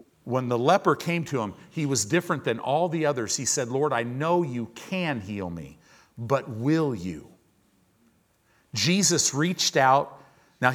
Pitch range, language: 110-155 Hz, English